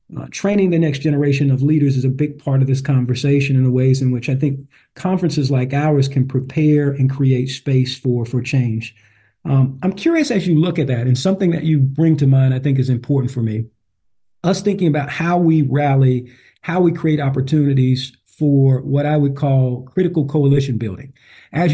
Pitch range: 130-160 Hz